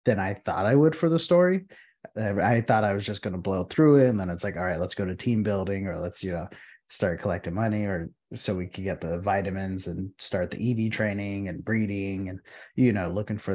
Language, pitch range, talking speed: English, 95-120 Hz, 250 wpm